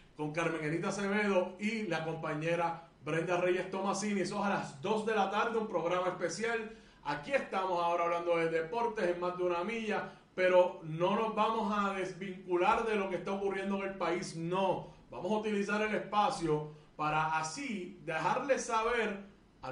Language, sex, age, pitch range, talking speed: Spanish, male, 30-49, 165-210 Hz, 170 wpm